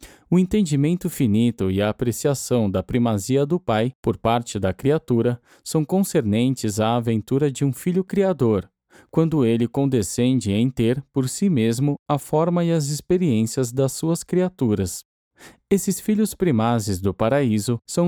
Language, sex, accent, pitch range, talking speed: Portuguese, male, Brazilian, 115-165 Hz, 145 wpm